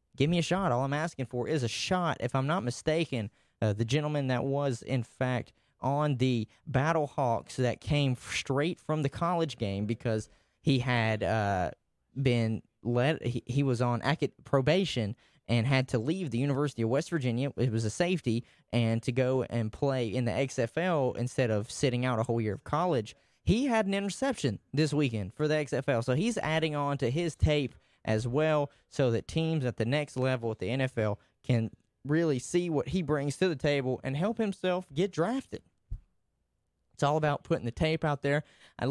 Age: 20-39